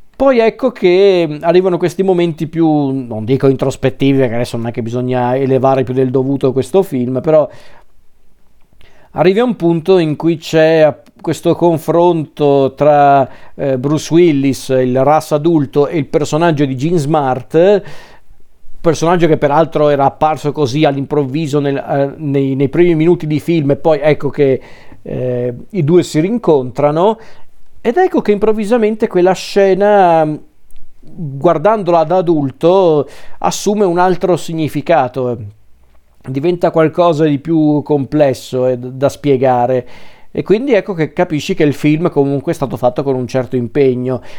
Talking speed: 145 wpm